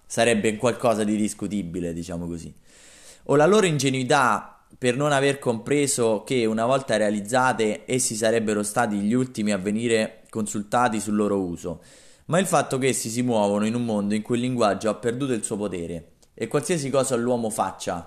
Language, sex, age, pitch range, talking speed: Italian, male, 20-39, 95-115 Hz, 175 wpm